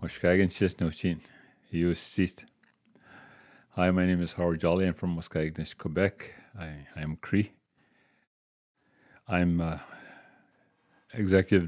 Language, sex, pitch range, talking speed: English, male, 85-90 Hz, 80 wpm